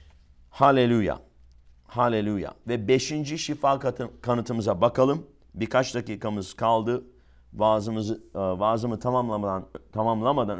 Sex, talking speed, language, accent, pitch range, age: male, 80 wpm, English, Turkish, 95-125 Hz, 50-69